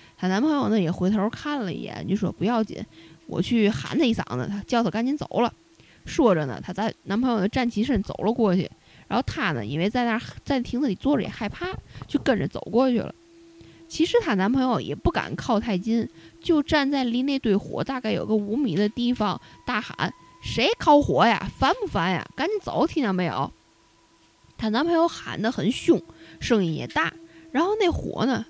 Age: 20-39